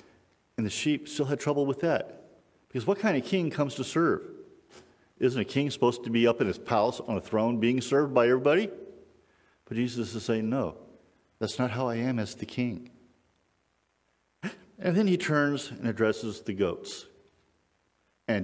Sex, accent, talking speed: male, American, 180 wpm